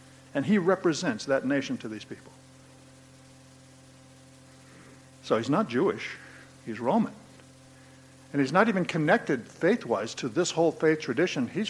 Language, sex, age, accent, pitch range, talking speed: English, male, 60-79, American, 130-185 Hz, 135 wpm